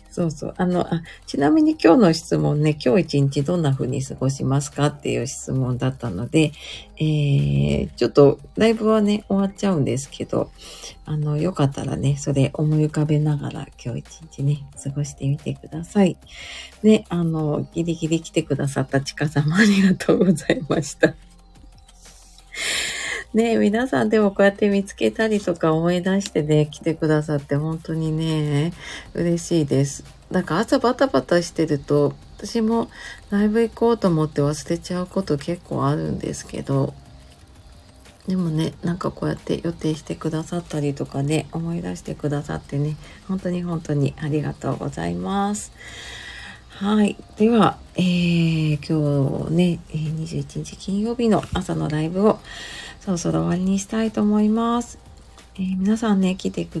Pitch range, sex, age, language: 145-190 Hz, female, 40-59, Japanese